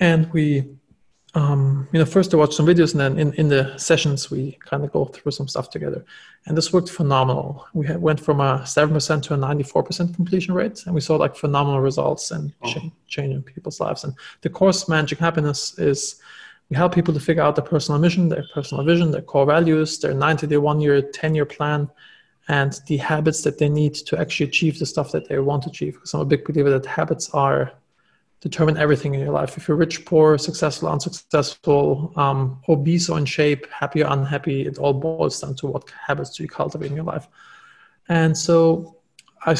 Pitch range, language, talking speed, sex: 145-165 Hz, English, 205 wpm, male